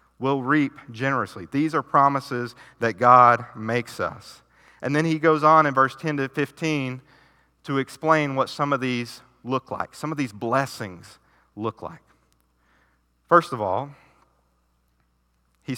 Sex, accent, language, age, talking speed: male, American, English, 40-59, 145 wpm